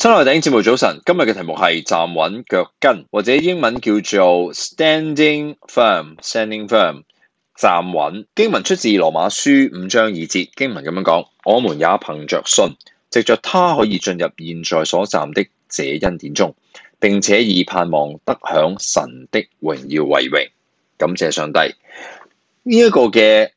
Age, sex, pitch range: 20-39, male, 90-150 Hz